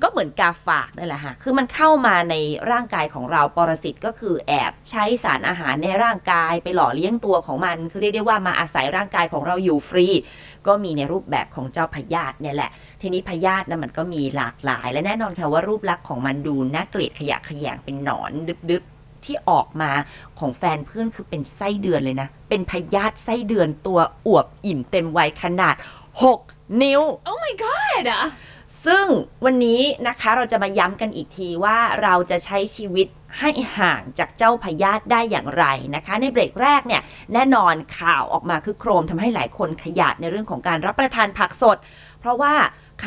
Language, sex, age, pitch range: Thai, female, 20-39, 155-220 Hz